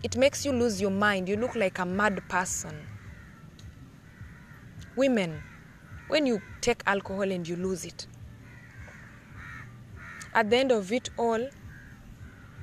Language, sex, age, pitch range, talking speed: English, female, 20-39, 155-245 Hz, 130 wpm